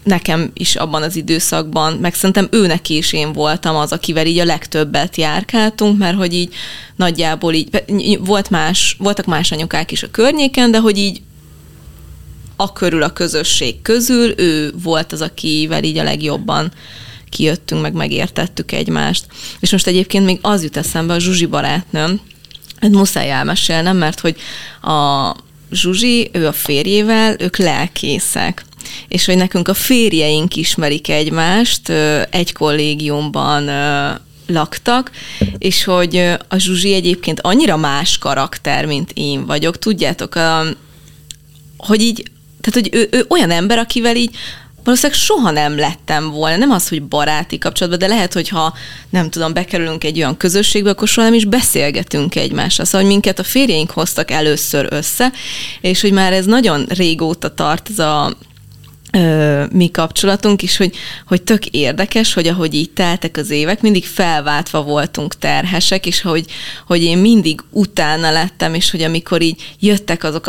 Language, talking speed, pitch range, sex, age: Hungarian, 150 wpm, 155-195 Hz, female, 20-39